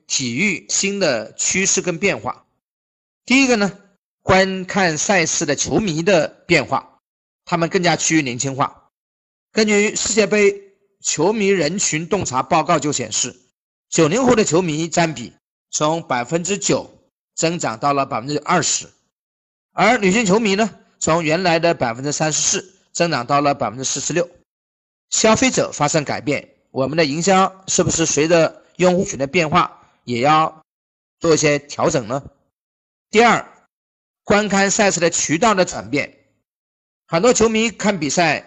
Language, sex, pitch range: Chinese, male, 145-195 Hz